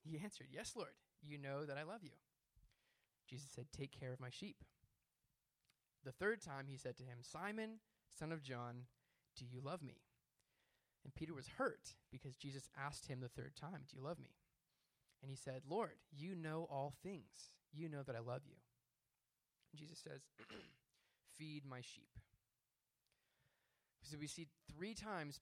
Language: English